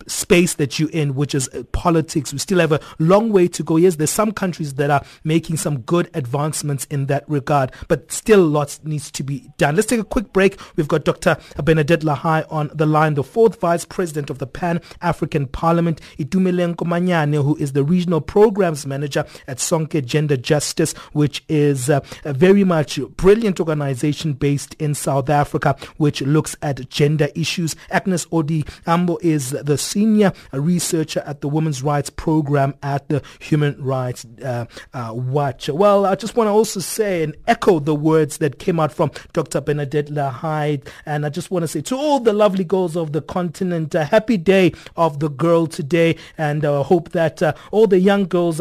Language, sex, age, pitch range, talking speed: English, male, 30-49, 145-180 Hz, 190 wpm